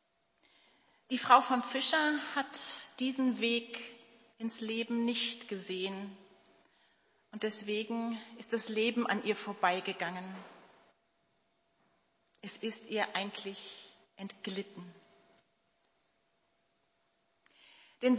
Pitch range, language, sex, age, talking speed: 205-255 Hz, German, female, 40-59, 80 wpm